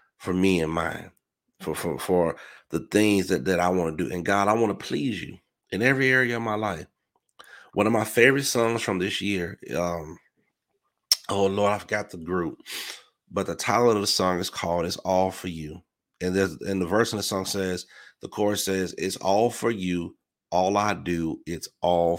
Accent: American